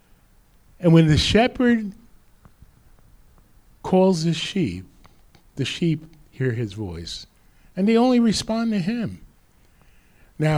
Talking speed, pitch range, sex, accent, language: 110 wpm, 105-155 Hz, male, American, English